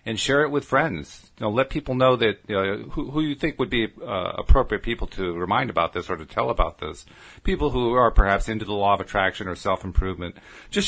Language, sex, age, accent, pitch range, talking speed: English, male, 40-59, American, 95-125 Hz, 215 wpm